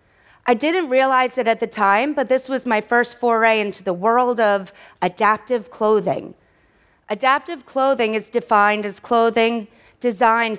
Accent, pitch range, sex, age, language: American, 210-260 Hz, female, 30-49, Korean